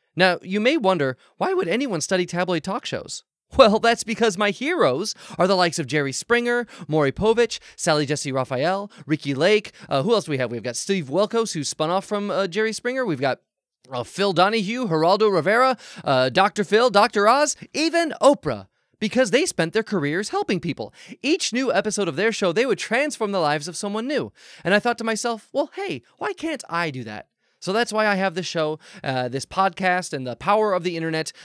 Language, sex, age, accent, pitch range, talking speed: English, male, 20-39, American, 150-215 Hz, 210 wpm